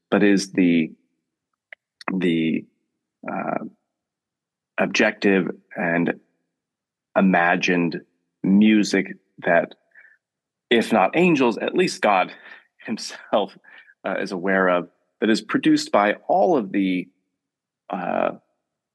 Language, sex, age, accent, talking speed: English, male, 30-49, American, 90 wpm